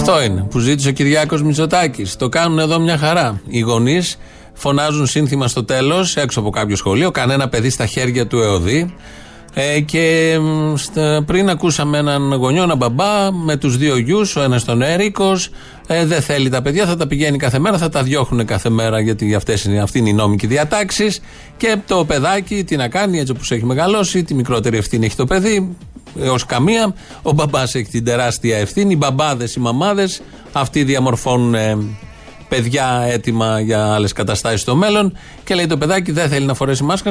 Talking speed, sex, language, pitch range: 190 wpm, male, Greek, 120-165 Hz